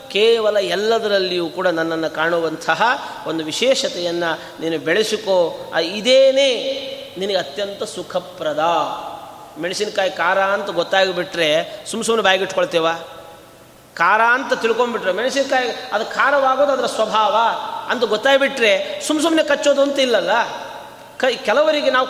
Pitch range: 180-280 Hz